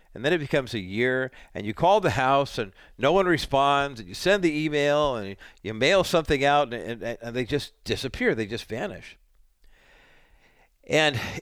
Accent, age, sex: American, 50-69, male